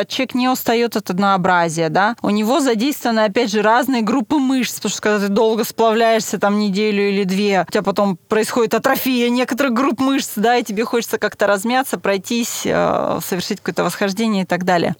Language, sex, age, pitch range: Russian, female, 20-39, 200-250 Hz